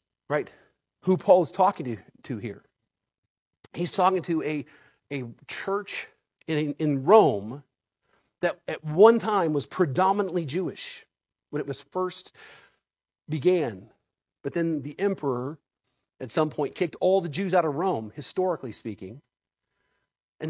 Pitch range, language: 145-205 Hz, English